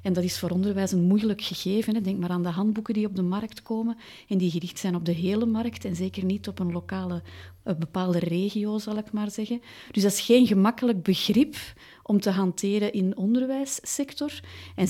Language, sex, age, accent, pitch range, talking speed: Dutch, female, 30-49, Belgian, 180-215 Hz, 210 wpm